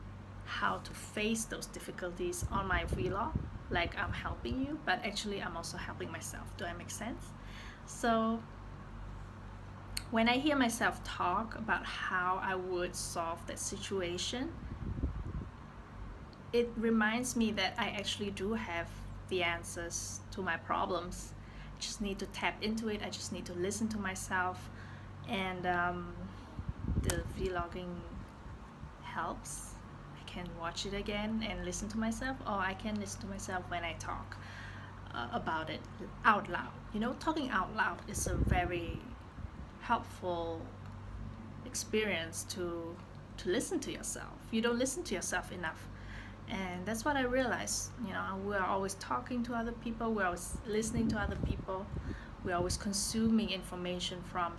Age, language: 20-39, Vietnamese